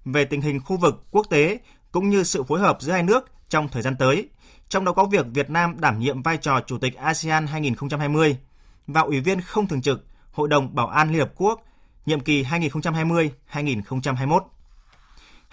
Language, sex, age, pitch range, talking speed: Vietnamese, male, 20-39, 135-175 Hz, 190 wpm